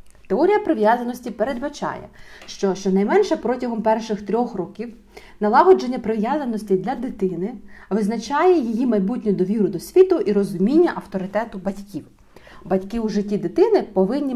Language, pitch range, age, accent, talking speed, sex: Ukrainian, 195-260 Hz, 30-49, native, 115 wpm, female